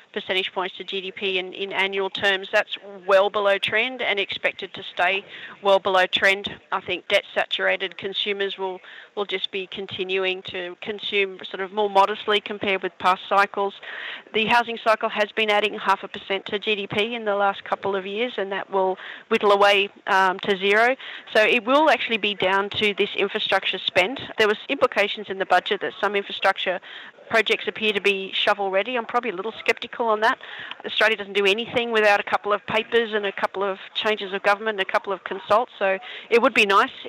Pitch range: 190-215 Hz